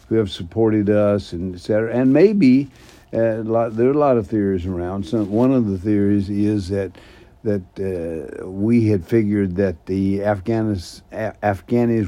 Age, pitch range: 60-79, 95-115 Hz